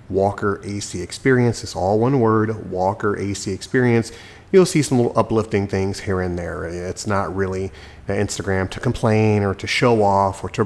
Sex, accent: male, American